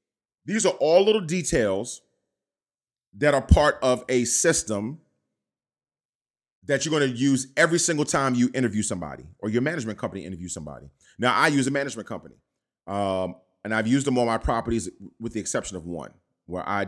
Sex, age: male, 30-49